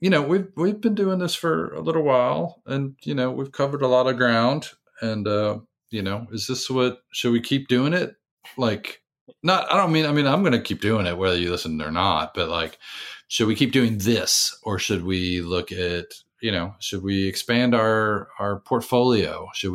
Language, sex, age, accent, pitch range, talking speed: English, male, 40-59, American, 85-120 Hz, 215 wpm